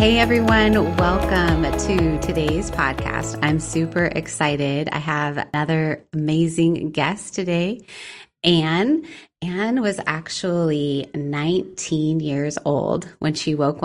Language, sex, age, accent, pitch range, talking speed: English, female, 20-39, American, 145-175 Hz, 110 wpm